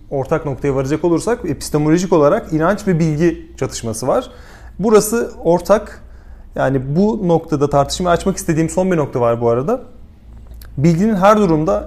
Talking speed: 140 wpm